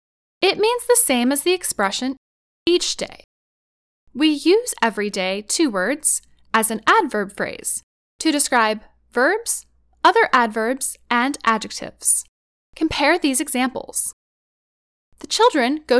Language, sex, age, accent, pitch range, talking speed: English, female, 10-29, American, 225-360 Hz, 120 wpm